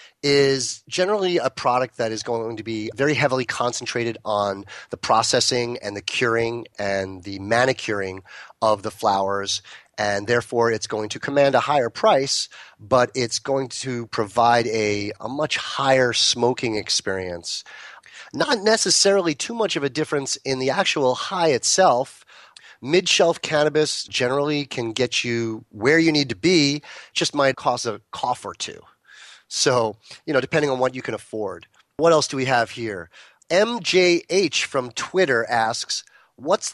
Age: 30-49